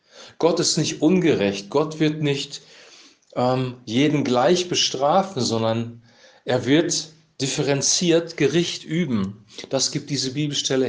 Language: German